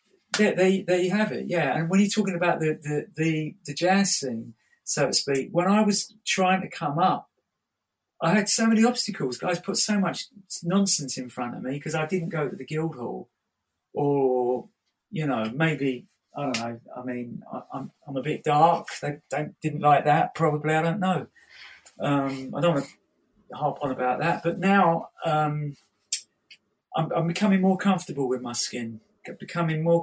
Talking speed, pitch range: 190 wpm, 135-180 Hz